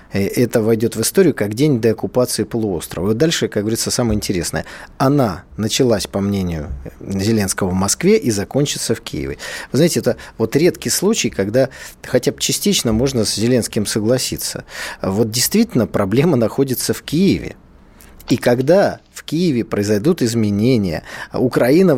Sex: male